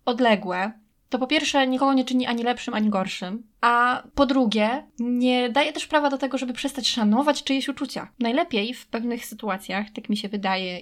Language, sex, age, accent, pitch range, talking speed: Polish, female, 20-39, native, 205-245 Hz, 185 wpm